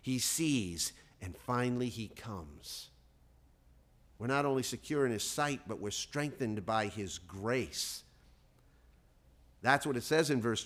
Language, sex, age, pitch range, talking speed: English, male, 50-69, 95-155 Hz, 140 wpm